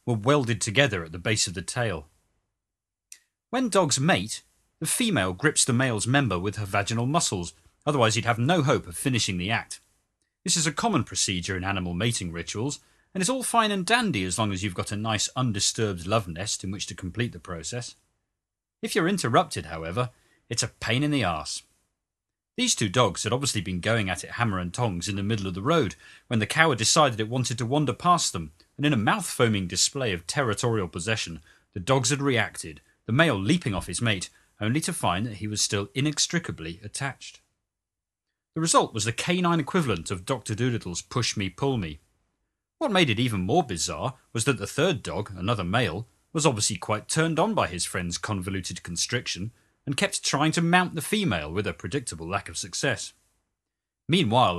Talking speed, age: 195 wpm, 40-59